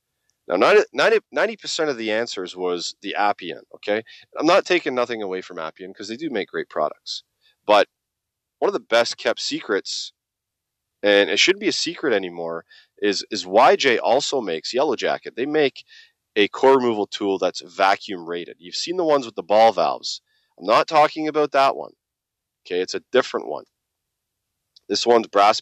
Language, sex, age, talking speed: English, male, 30-49, 175 wpm